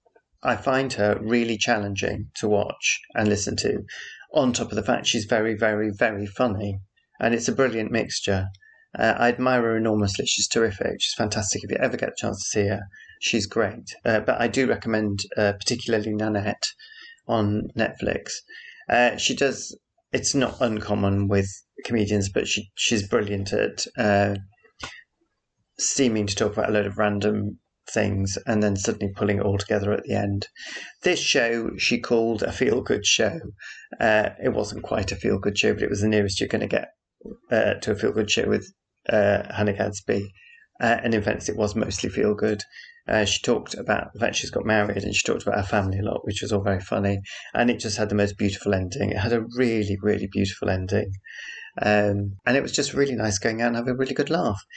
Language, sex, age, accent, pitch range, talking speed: English, male, 30-49, British, 100-115 Hz, 195 wpm